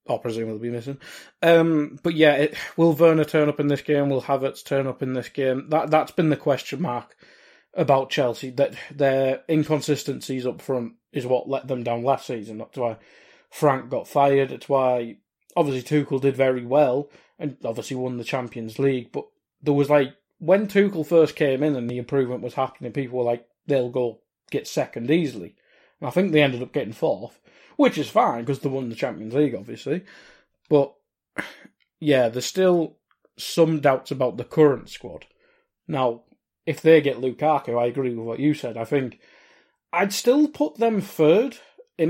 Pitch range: 125-155 Hz